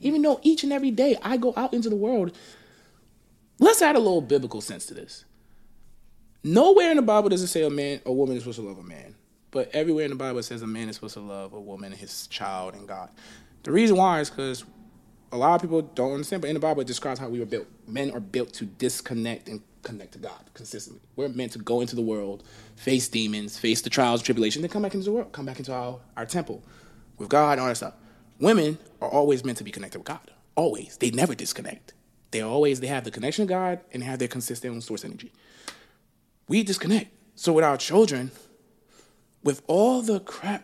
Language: English